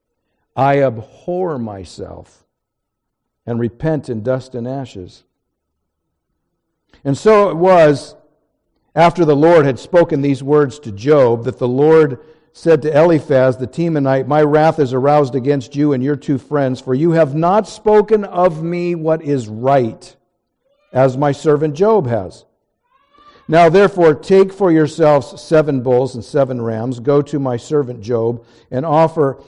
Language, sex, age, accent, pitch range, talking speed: English, male, 50-69, American, 125-160 Hz, 145 wpm